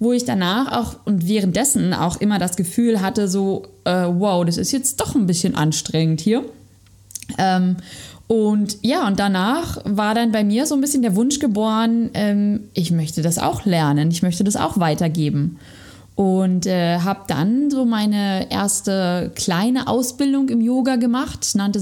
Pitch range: 175-235 Hz